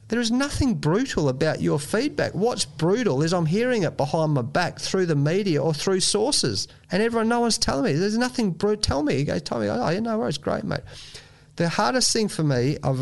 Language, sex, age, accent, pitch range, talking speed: English, male, 30-49, Australian, 135-175 Hz, 215 wpm